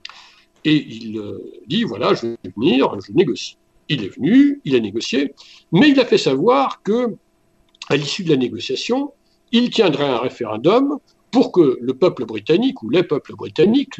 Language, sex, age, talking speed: French, male, 60-79, 165 wpm